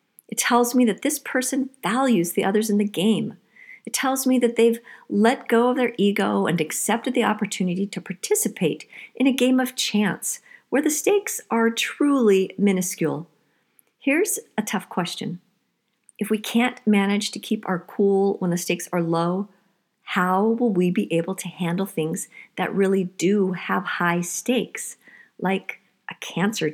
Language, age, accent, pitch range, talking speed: English, 50-69, American, 180-235 Hz, 165 wpm